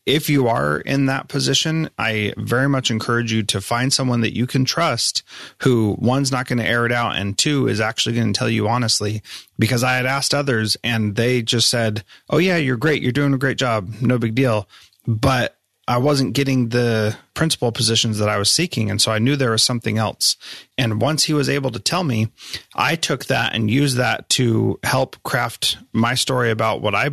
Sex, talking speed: male, 215 wpm